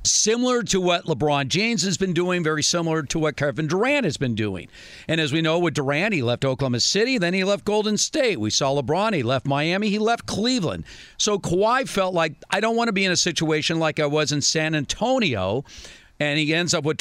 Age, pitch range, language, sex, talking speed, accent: 50-69, 140-195 Hz, English, male, 225 wpm, American